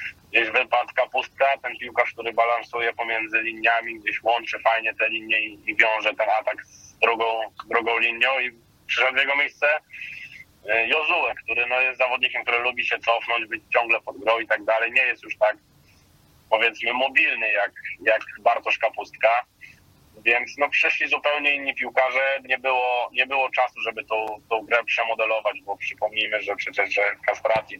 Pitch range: 115-135 Hz